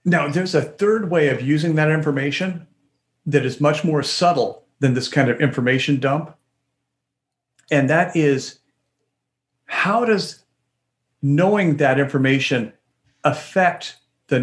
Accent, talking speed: American, 125 wpm